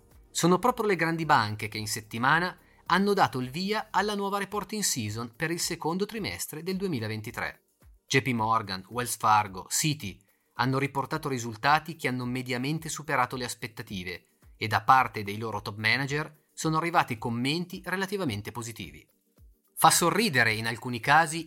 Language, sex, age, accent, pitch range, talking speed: Italian, male, 30-49, native, 110-155 Hz, 150 wpm